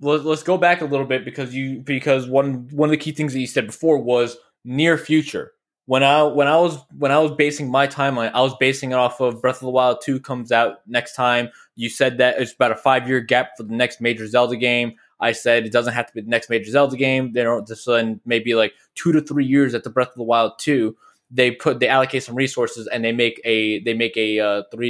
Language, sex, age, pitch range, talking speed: English, male, 20-39, 115-135 Hz, 255 wpm